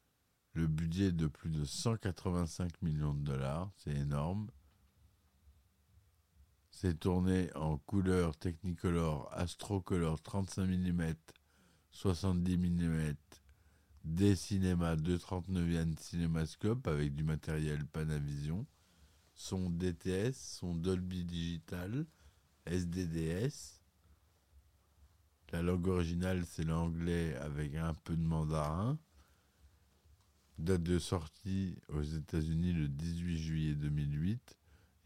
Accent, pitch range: French, 75-90 Hz